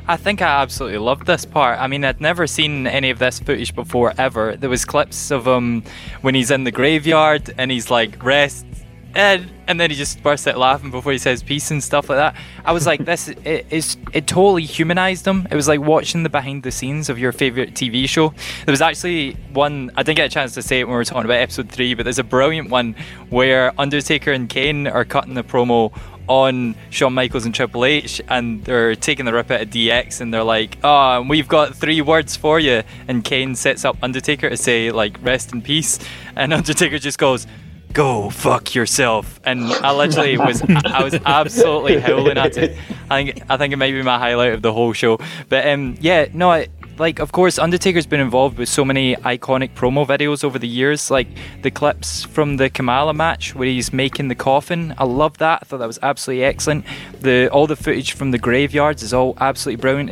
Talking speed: 220 wpm